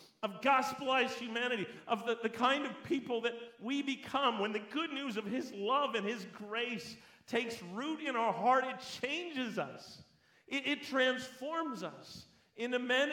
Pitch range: 220-255 Hz